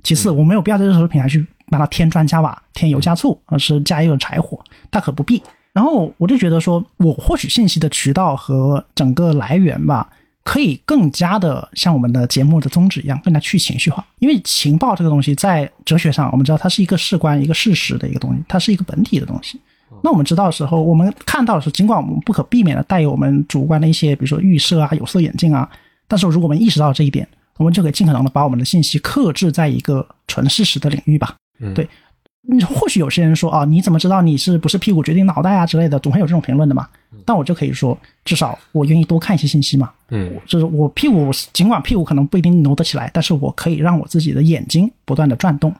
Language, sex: Chinese, male